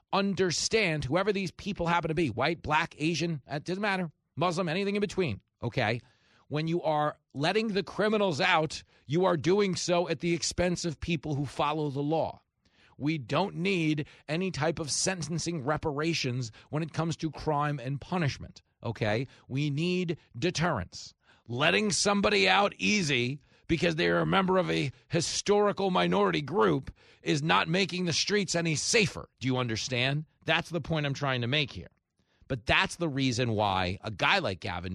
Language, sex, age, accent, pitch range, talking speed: English, male, 40-59, American, 120-175 Hz, 170 wpm